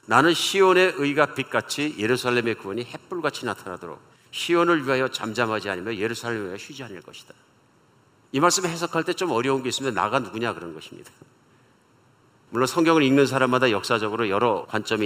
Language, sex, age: Korean, male, 50-69